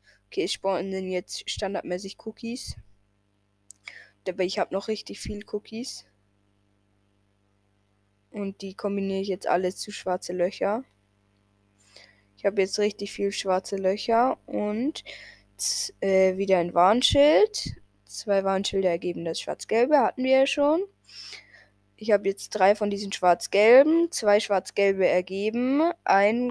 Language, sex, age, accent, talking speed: German, female, 20-39, German, 125 wpm